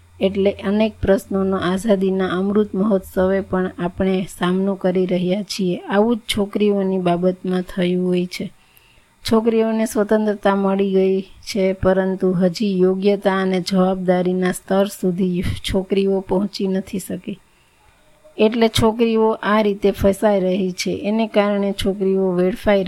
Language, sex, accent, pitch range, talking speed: Gujarati, female, native, 190-210 Hz, 120 wpm